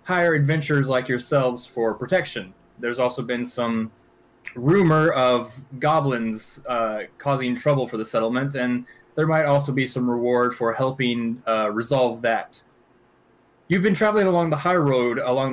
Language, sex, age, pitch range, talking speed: English, male, 20-39, 120-155 Hz, 150 wpm